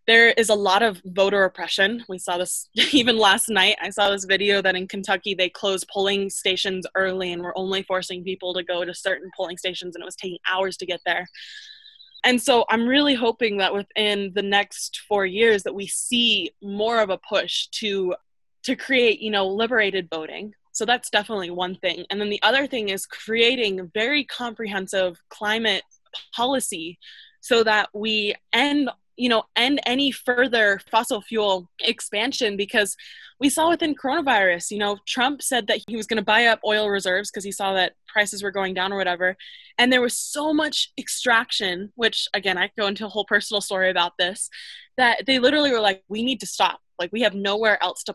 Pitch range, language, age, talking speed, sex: 190-235 Hz, English, 20-39, 195 wpm, female